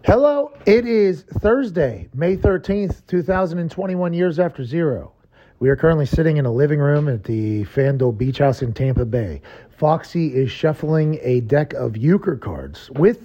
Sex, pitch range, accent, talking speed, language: male, 155-210 Hz, American, 160 wpm, English